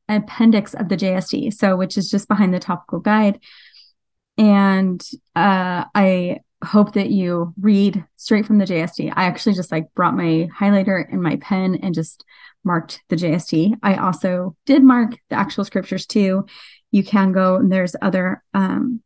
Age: 30-49